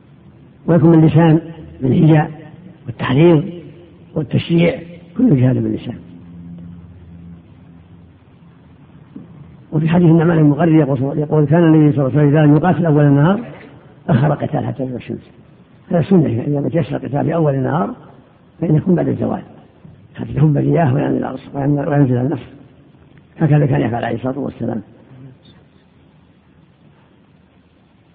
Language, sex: Arabic, female